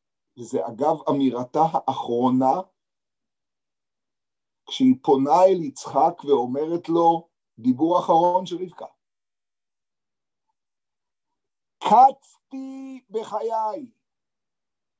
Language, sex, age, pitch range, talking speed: Hebrew, male, 50-69, 160-245 Hz, 65 wpm